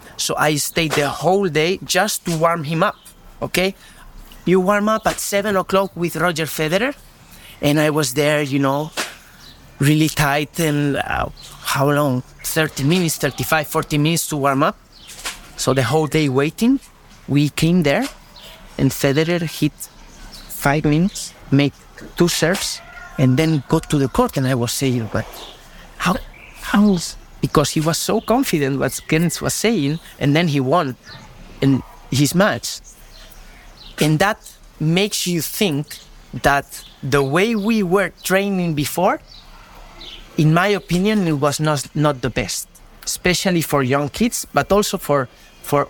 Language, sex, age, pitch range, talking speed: English, male, 30-49, 145-190 Hz, 150 wpm